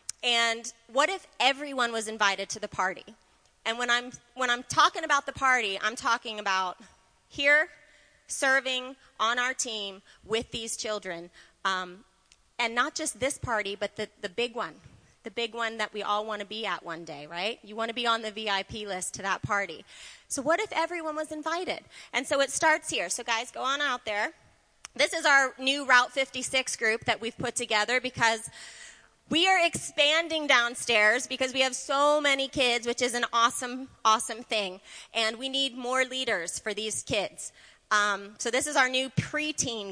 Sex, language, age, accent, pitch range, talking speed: female, English, 30-49, American, 220-275 Hz, 185 wpm